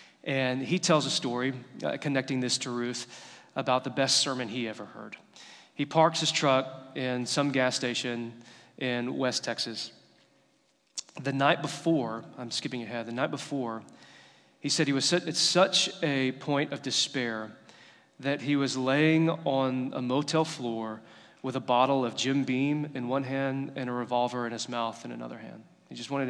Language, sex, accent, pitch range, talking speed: English, male, American, 125-150 Hz, 175 wpm